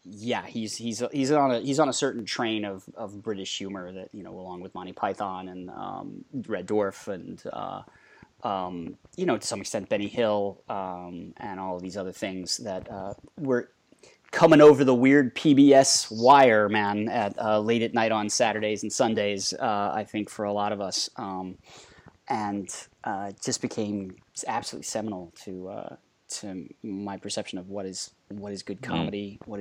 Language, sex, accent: English, male, American